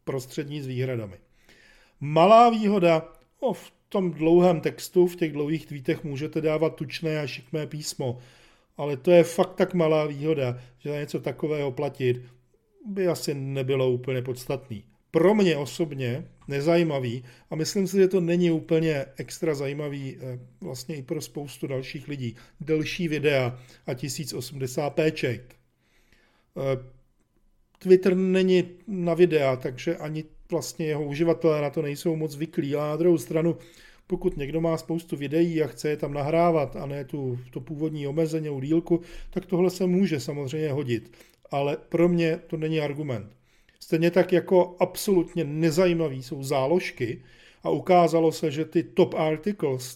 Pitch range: 140-170 Hz